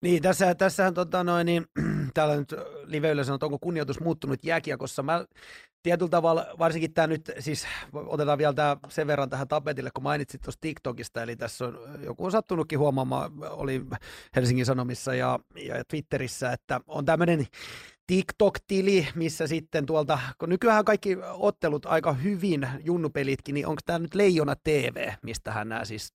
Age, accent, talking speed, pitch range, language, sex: 30-49, native, 150 wpm, 145-185 Hz, Finnish, male